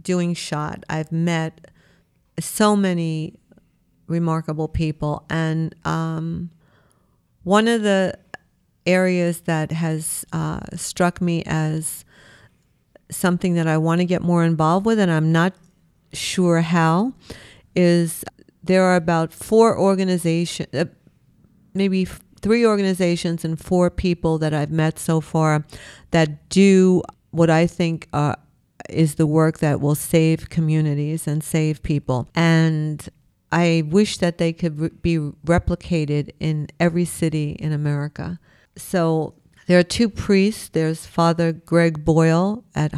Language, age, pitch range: English, 50-69, 155-175 Hz